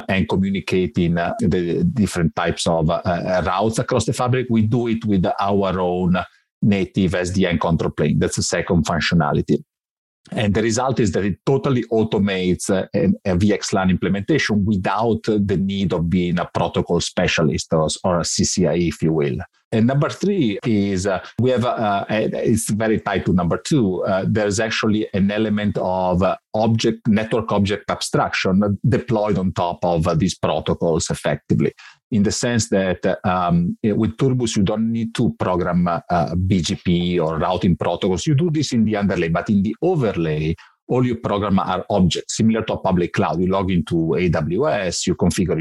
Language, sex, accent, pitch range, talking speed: English, male, Italian, 90-115 Hz, 170 wpm